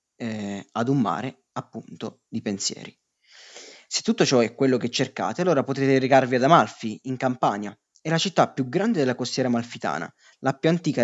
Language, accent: Italian, native